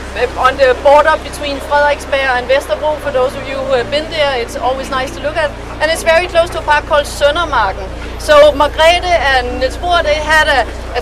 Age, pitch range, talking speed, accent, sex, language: 40-59, 275-320 Hz, 205 wpm, native, female, Danish